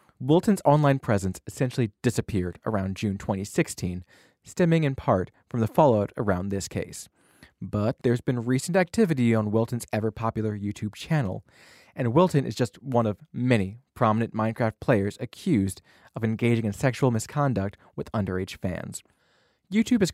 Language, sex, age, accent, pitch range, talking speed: English, male, 20-39, American, 105-135 Hz, 145 wpm